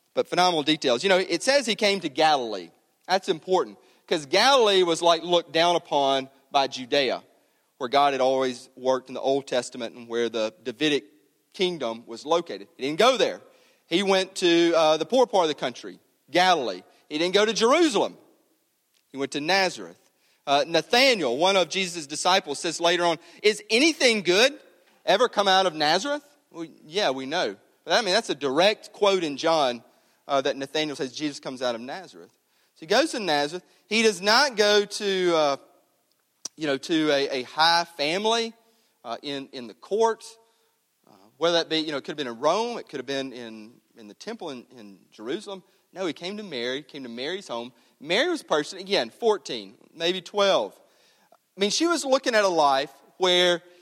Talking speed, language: 195 wpm, English